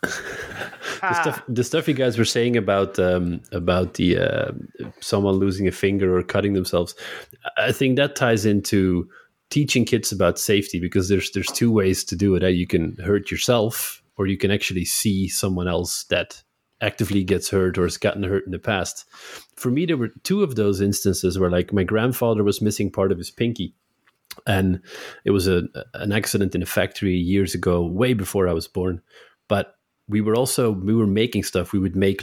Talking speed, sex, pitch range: 195 wpm, male, 90-105 Hz